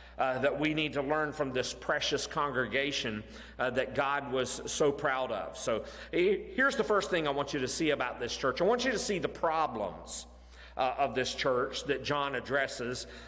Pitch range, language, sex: 130-175 Hz, English, male